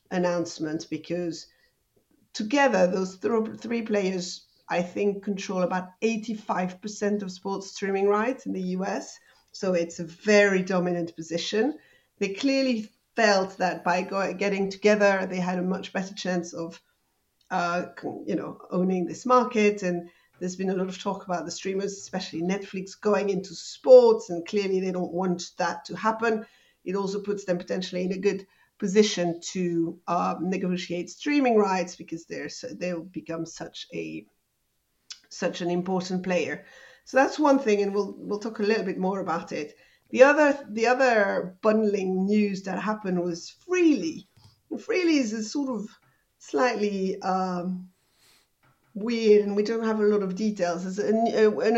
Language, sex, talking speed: English, female, 160 wpm